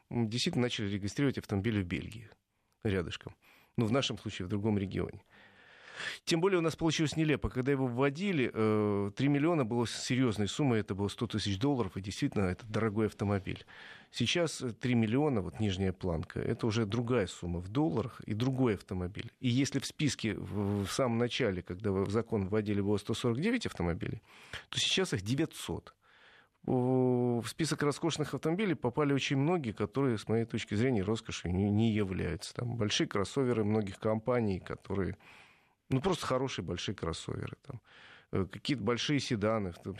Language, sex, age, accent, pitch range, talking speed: Russian, male, 40-59, native, 105-135 Hz, 155 wpm